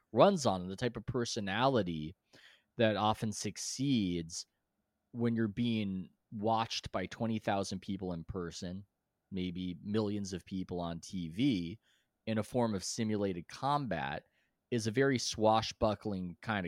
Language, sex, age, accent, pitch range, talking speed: English, male, 20-39, American, 95-120 Hz, 125 wpm